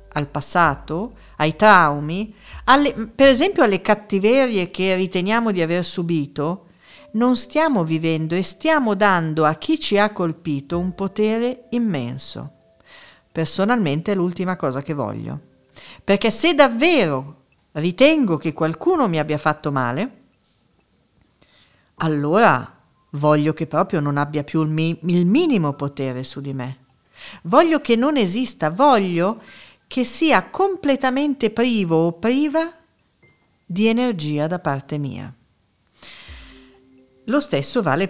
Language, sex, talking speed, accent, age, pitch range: Italian, female, 120 wpm, native, 50-69, 150-230 Hz